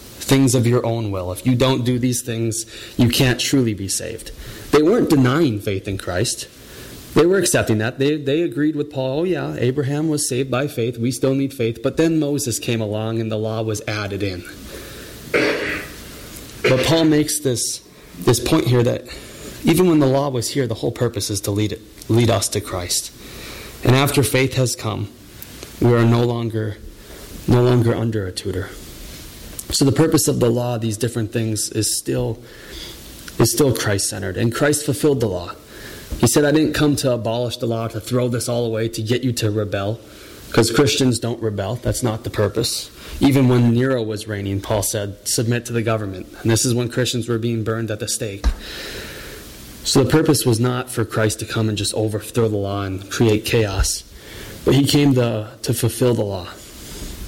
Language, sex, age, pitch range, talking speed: English, male, 20-39, 110-130 Hz, 195 wpm